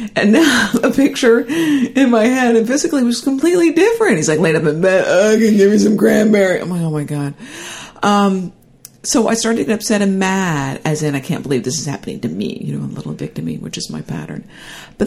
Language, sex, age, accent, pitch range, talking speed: English, female, 50-69, American, 155-230 Hz, 245 wpm